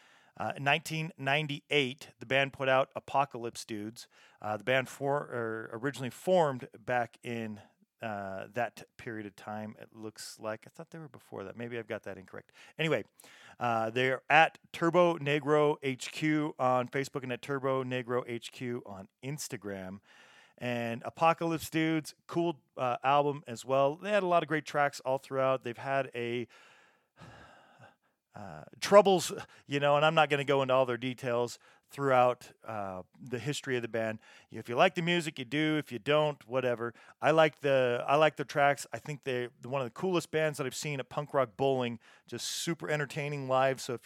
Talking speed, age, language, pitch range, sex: 180 wpm, 40-59, English, 120-150 Hz, male